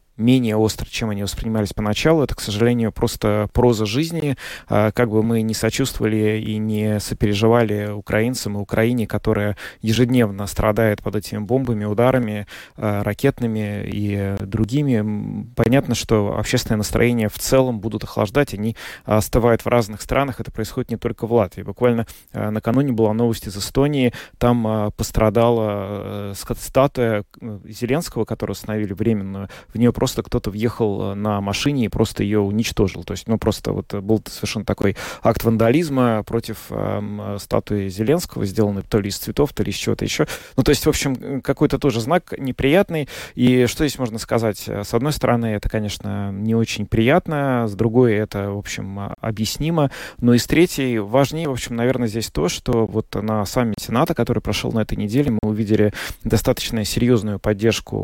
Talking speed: 160 wpm